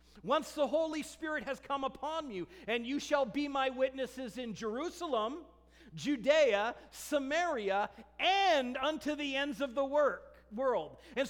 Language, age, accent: English, 40-59, American